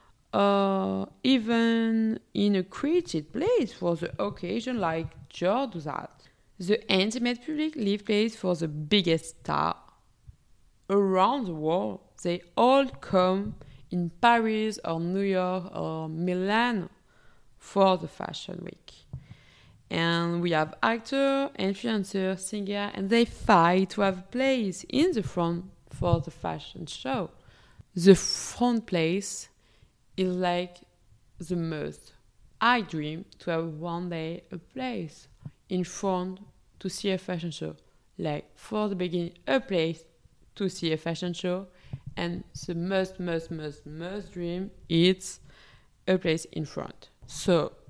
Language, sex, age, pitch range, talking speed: English, female, 20-39, 165-205 Hz, 130 wpm